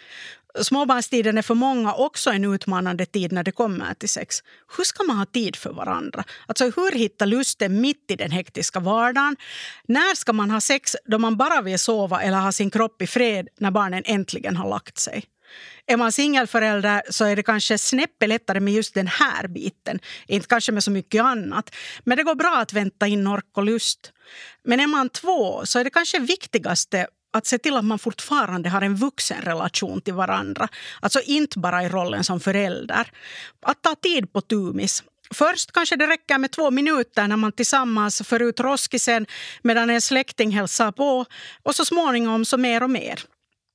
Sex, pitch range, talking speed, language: female, 200-270 Hz, 190 wpm, Swedish